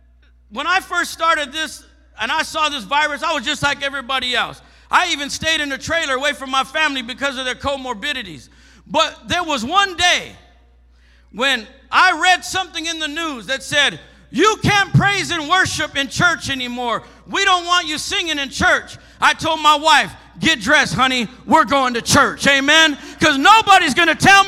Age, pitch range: 50-69, 265-360 Hz